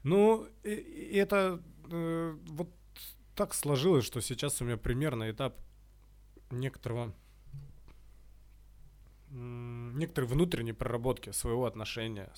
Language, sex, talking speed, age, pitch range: Russian, male, 100 wpm, 20-39, 110-145 Hz